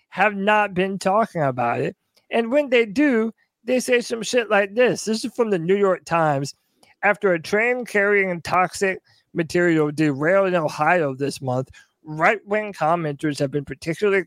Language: English